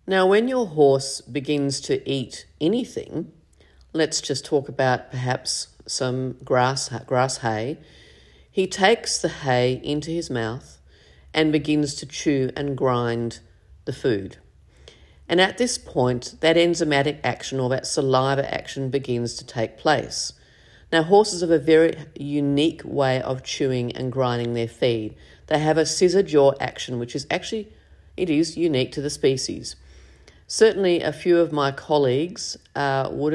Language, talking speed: English, 150 wpm